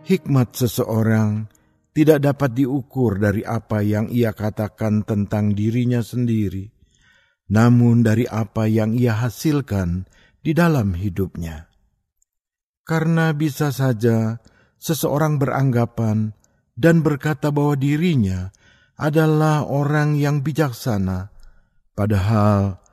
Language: Indonesian